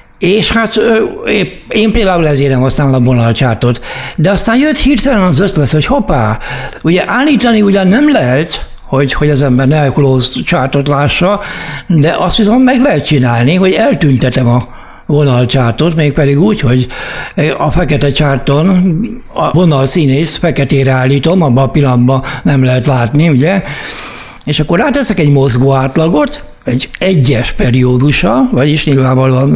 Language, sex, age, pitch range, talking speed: Hungarian, male, 60-79, 135-195 Hz, 140 wpm